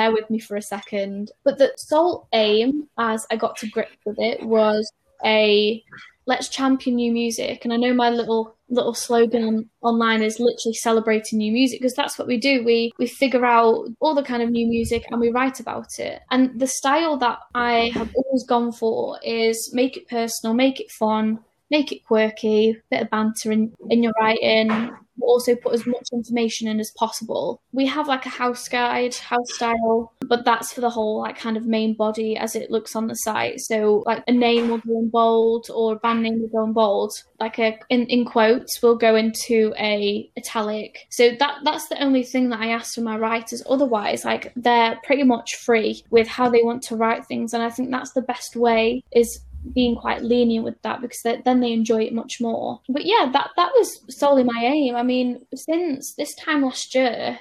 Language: English